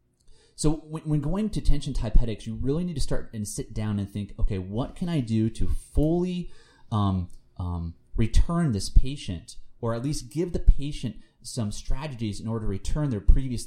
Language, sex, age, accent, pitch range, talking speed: English, male, 30-49, American, 95-130 Hz, 190 wpm